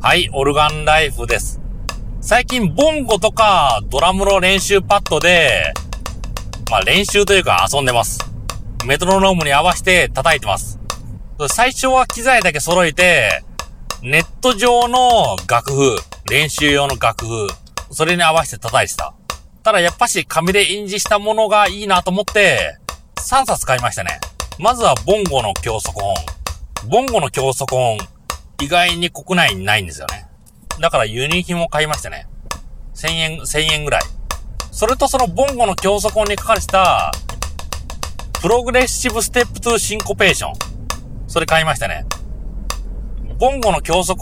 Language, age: Japanese, 30-49